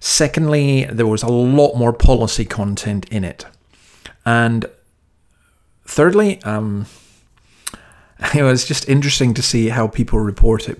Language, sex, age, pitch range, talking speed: English, male, 40-59, 100-125 Hz, 130 wpm